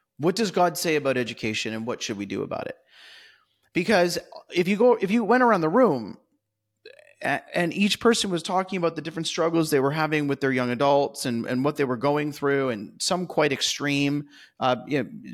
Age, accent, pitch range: 30-49, American, 140-180 Hz